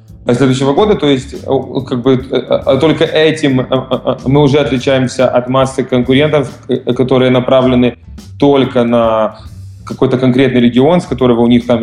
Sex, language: male, Russian